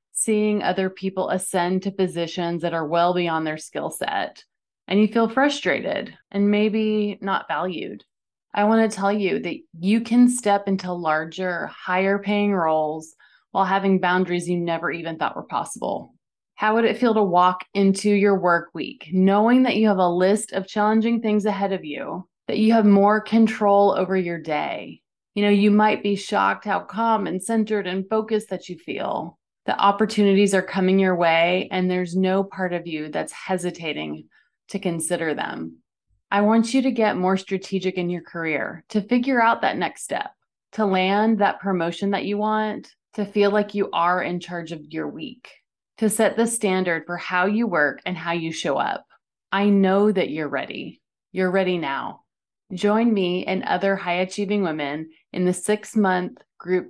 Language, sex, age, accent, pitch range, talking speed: English, female, 30-49, American, 175-210 Hz, 180 wpm